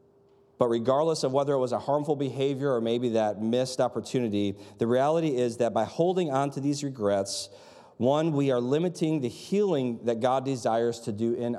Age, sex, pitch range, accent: 40-59, male, 120-160 Hz, American